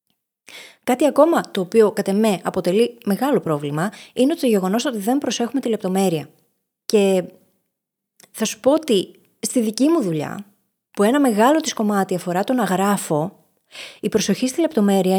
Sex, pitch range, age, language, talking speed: female, 175-240 Hz, 20-39, Greek, 155 wpm